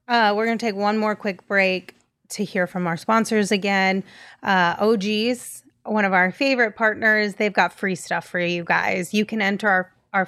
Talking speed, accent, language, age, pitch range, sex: 200 wpm, American, English, 30-49, 185-225 Hz, female